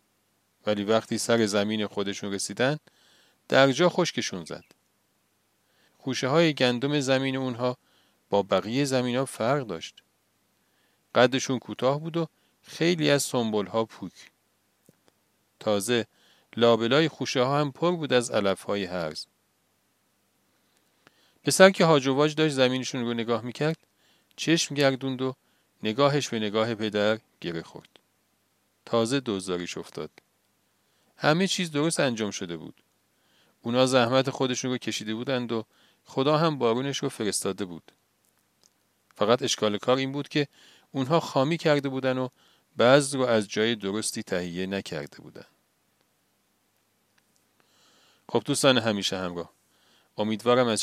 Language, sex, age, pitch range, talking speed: Persian, male, 40-59, 100-135 Hz, 120 wpm